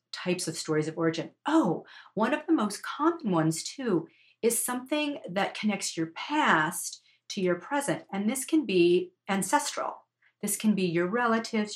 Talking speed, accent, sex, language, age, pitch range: 165 wpm, American, female, English, 40-59, 160-215 Hz